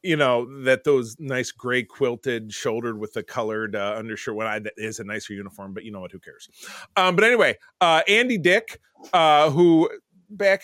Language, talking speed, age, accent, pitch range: English, 200 wpm, 30-49, American, 115-170 Hz